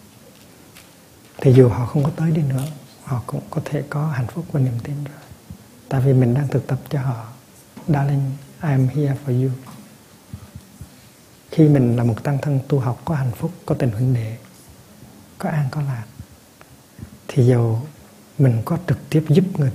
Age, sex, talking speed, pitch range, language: 60-79, male, 180 wpm, 120-145 Hz, Vietnamese